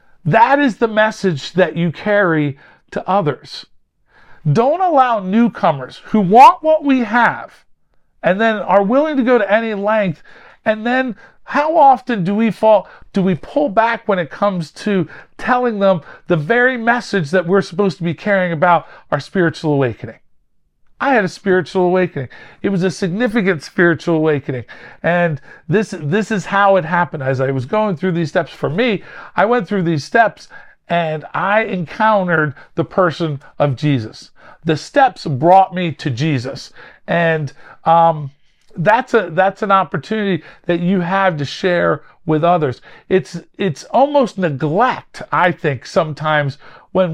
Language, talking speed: English, 155 wpm